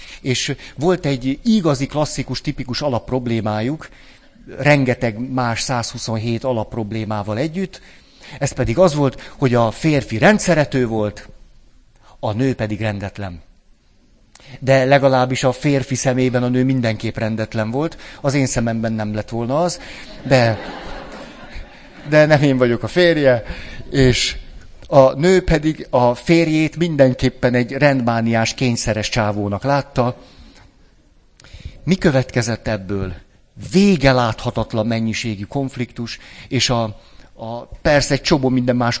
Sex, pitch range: male, 115-145 Hz